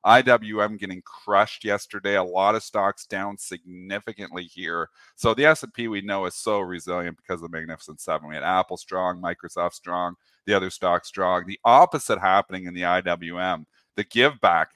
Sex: male